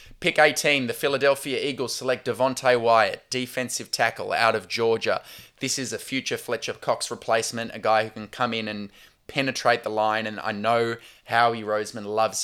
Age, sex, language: 20-39, male, English